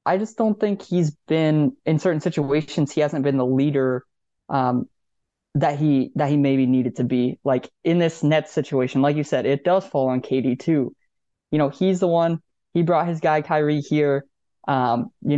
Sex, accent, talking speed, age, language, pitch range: male, American, 195 wpm, 20-39, English, 135-170 Hz